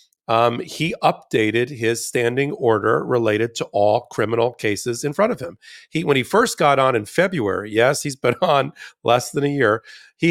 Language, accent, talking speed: English, American, 185 wpm